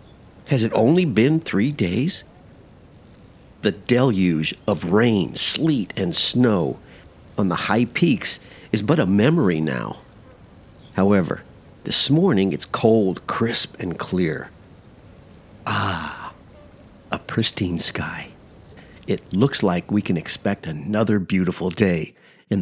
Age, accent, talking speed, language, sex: 50-69, American, 115 wpm, English, male